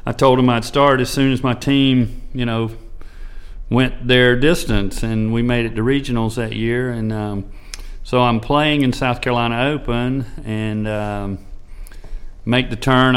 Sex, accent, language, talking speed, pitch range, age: male, American, English, 170 wpm, 105-125 Hz, 40-59